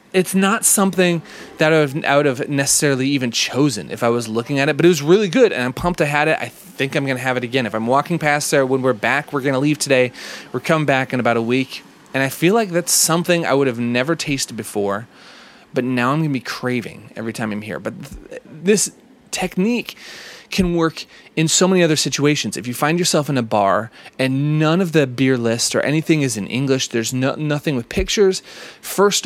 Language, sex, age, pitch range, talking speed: English, male, 30-49, 125-165 Hz, 230 wpm